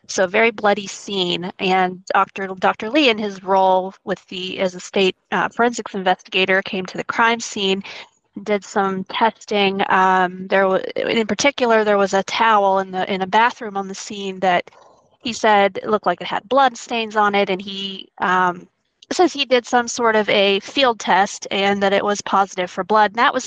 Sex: female